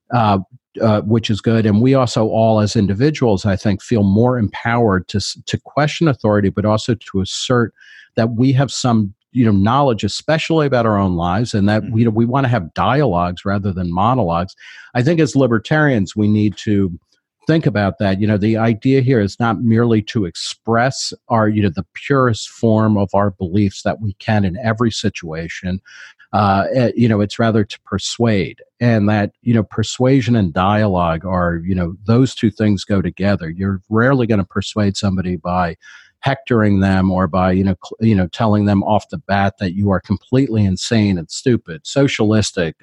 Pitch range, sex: 100-120 Hz, male